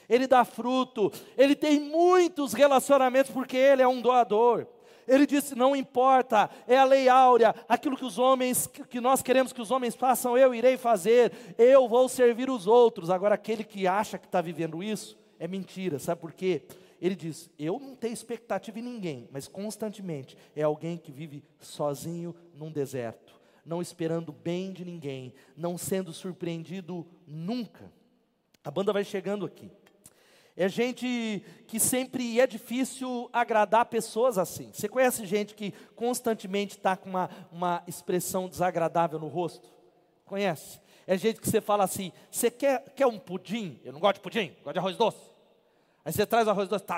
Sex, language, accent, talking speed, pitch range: male, Portuguese, Brazilian, 170 wpm, 180-245 Hz